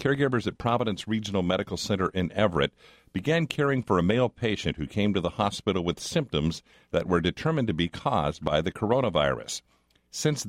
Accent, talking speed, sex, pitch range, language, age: American, 175 wpm, male, 85-115 Hz, English, 50-69